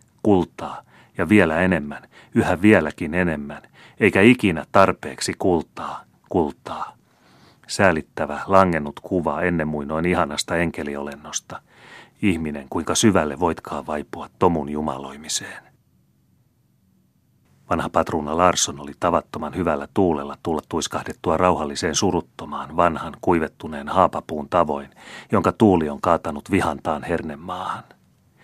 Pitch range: 75-95 Hz